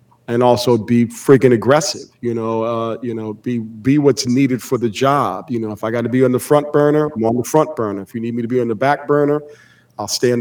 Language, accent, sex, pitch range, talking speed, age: English, American, male, 120-145 Hz, 265 wpm, 40-59